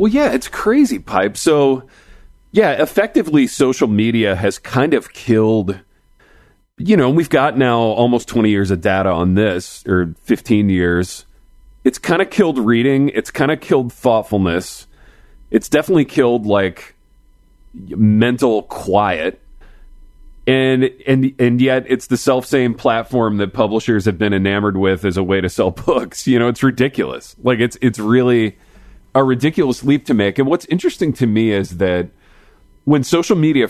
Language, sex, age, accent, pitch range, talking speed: English, male, 30-49, American, 100-130 Hz, 155 wpm